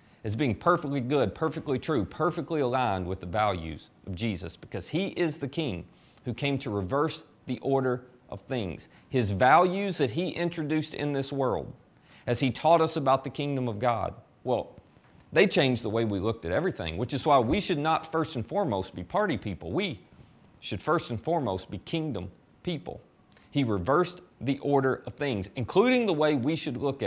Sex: male